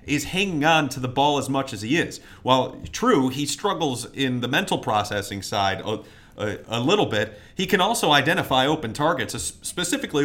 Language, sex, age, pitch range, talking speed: English, male, 30-49, 115-170 Hz, 185 wpm